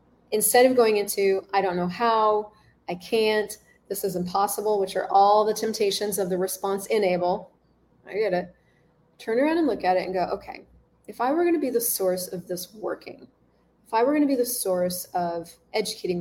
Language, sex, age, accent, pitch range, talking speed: English, female, 30-49, American, 185-240 Hz, 205 wpm